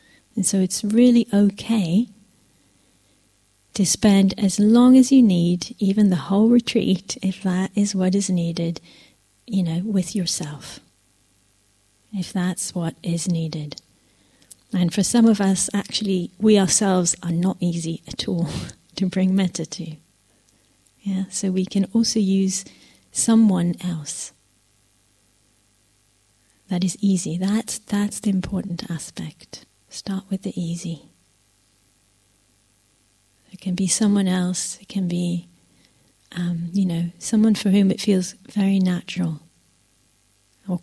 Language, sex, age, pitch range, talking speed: English, female, 30-49, 165-195 Hz, 125 wpm